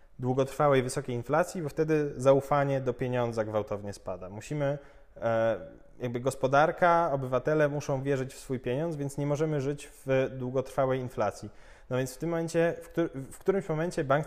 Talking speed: 150 wpm